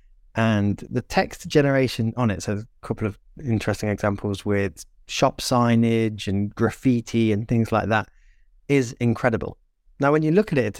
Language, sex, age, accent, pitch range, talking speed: English, male, 30-49, British, 105-130 Hz, 165 wpm